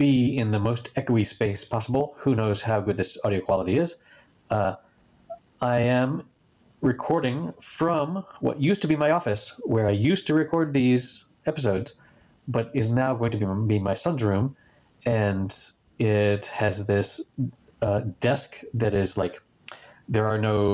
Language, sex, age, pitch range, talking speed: English, male, 30-49, 100-130 Hz, 155 wpm